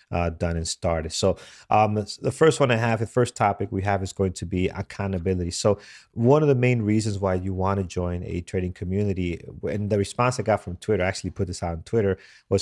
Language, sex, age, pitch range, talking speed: English, male, 30-49, 90-115 Hz, 240 wpm